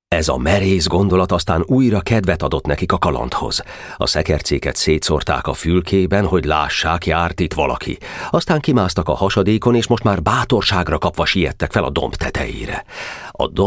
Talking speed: 160 wpm